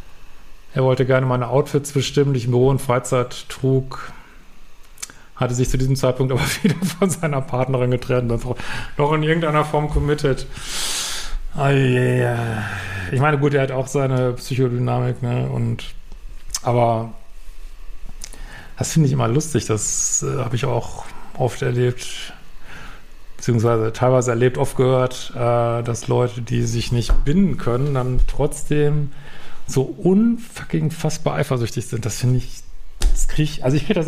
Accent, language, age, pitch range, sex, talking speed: German, German, 40-59, 120-145 Hz, male, 150 wpm